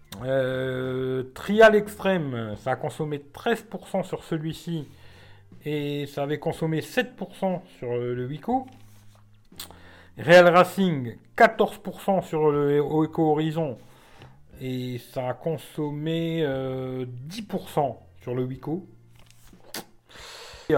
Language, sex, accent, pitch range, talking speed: French, male, French, 130-180 Hz, 100 wpm